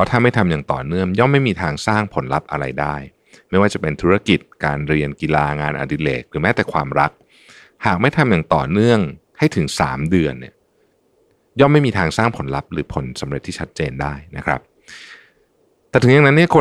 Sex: male